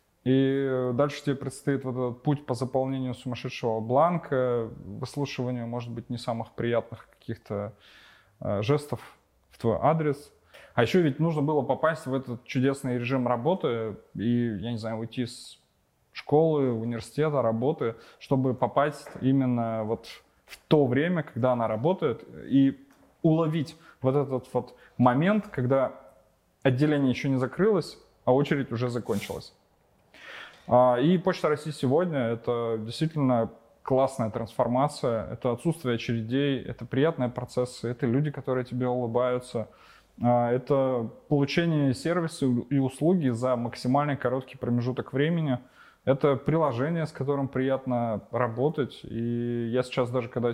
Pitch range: 120-140 Hz